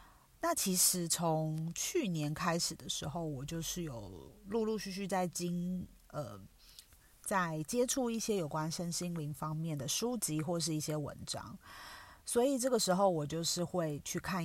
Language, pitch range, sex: Chinese, 155-185 Hz, female